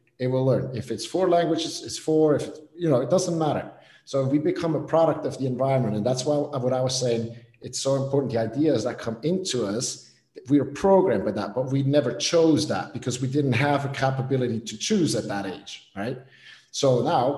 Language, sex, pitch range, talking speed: English, male, 115-150 Hz, 225 wpm